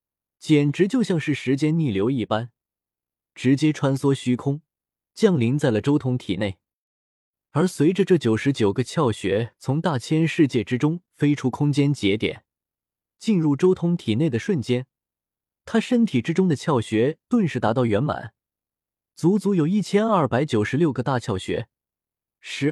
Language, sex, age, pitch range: Chinese, male, 20-39, 115-170 Hz